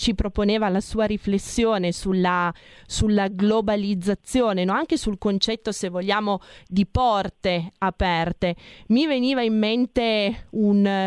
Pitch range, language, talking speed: 190-220 Hz, Italian, 115 wpm